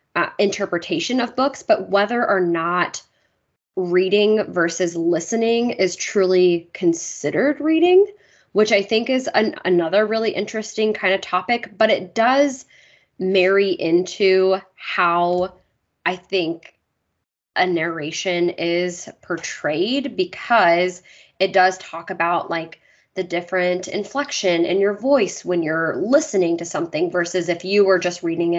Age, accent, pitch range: 20-39, American, 175-220 Hz